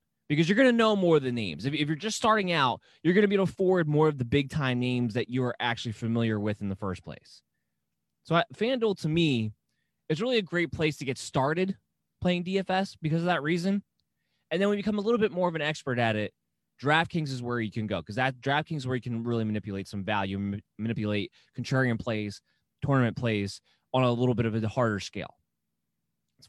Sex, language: male, English